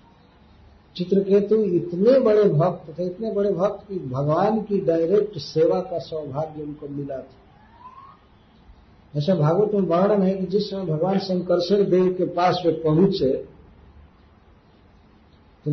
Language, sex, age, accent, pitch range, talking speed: Hindi, male, 50-69, native, 130-195 Hz, 135 wpm